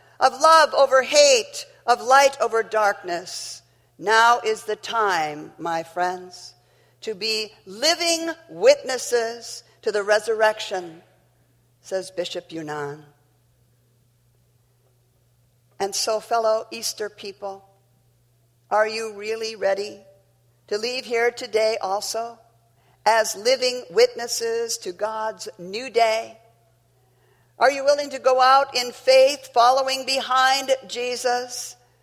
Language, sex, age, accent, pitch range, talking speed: English, female, 50-69, American, 170-275 Hz, 105 wpm